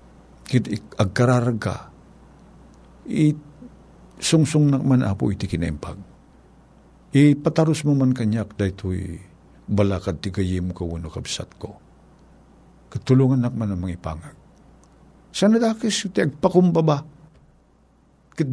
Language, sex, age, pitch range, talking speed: Filipino, male, 60-79, 85-125 Hz, 110 wpm